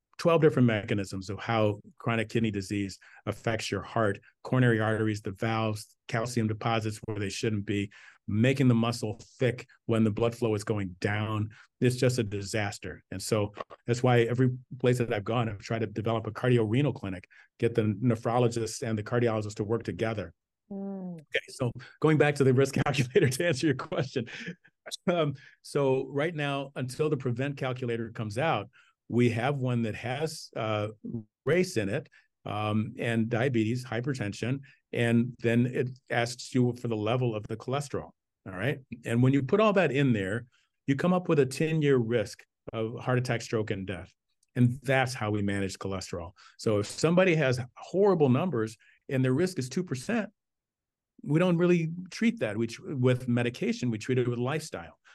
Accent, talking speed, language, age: American, 170 wpm, English, 40-59